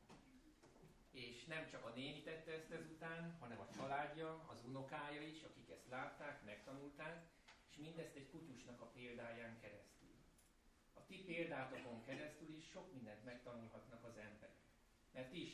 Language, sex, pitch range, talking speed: Hungarian, male, 125-155 Hz, 145 wpm